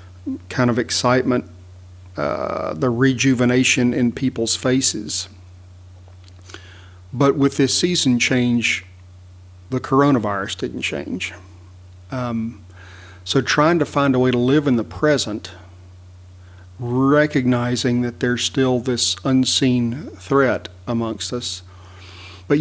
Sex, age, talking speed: male, 50-69, 105 wpm